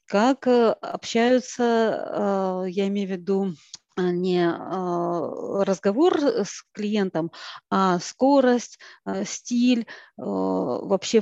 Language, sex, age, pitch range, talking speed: Russian, female, 40-59, 185-235 Hz, 75 wpm